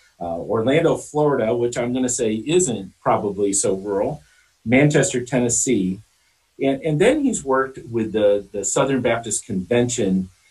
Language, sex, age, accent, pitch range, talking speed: English, male, 50-69, American, 100-135 Hz, 145 wpm